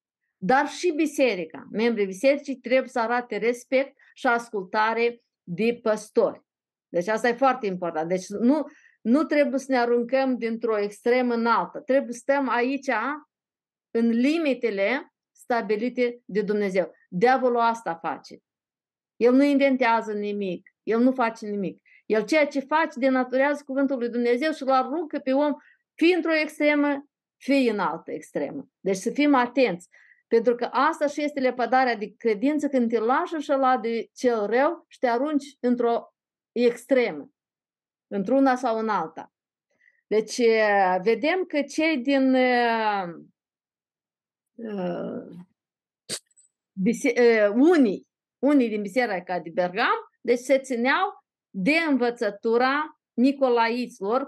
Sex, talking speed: female, 130 wpm